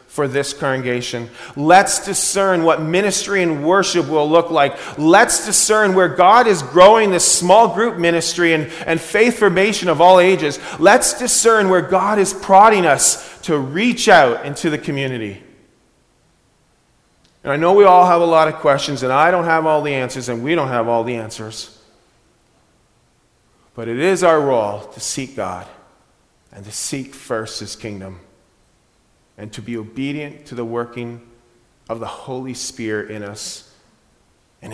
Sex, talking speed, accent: male, 160 wpm, American